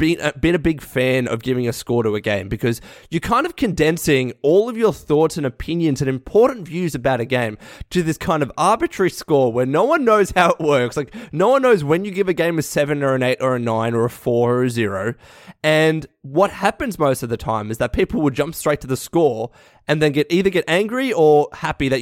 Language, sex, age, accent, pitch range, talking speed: English, male, 20-39, Australian, 130-175 Hz, 245 wpm